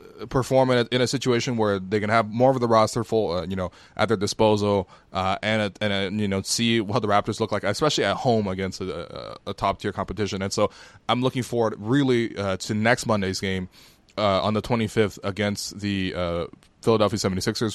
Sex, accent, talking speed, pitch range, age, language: male, American, 215 wpm, 95-115 Hz, 20-39, English